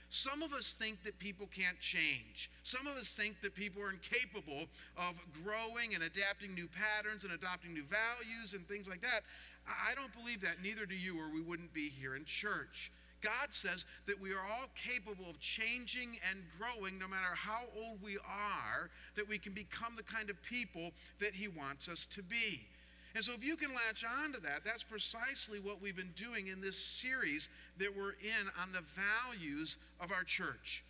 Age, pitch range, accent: 50-69, 180-225 Hz, American